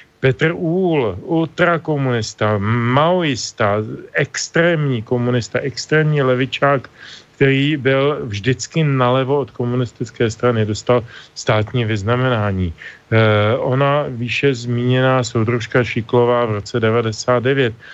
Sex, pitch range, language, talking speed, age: male, 115-130 Hz, Slovak, 85 wpm, 40-59